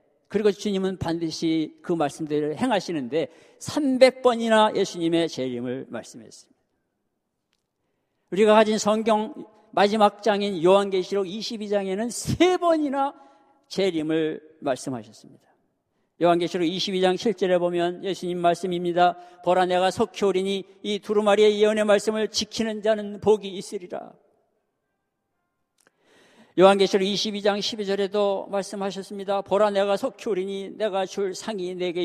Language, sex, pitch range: Korean, male, 175-215 Hz